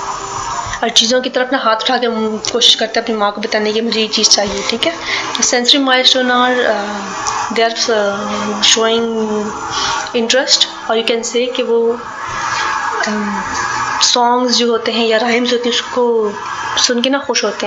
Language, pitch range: Hindi, 220-240 Hz